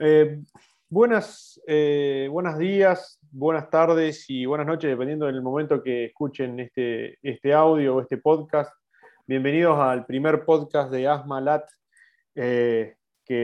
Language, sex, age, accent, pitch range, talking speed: Spanish, male, 20-39, Argentinian, 135-170 Hz, 135 wpm